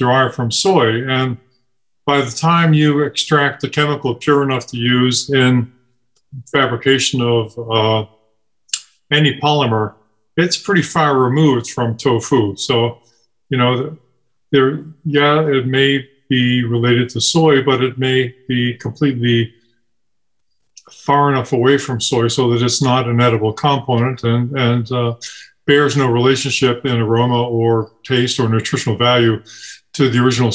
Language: English